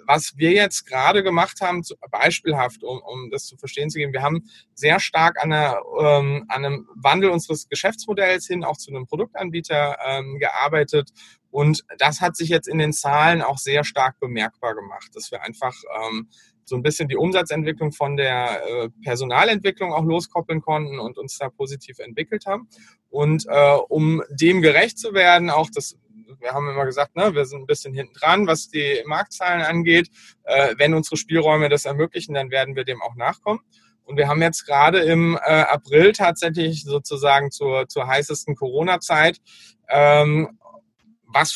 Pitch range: 140-170 Hz